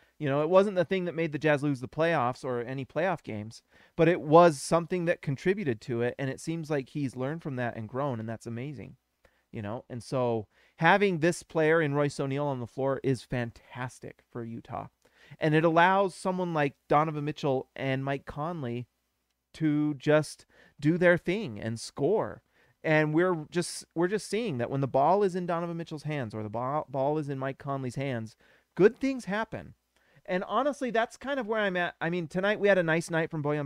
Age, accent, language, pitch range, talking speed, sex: 30-49, American, English, 135-180 Hz, 205 wpm, male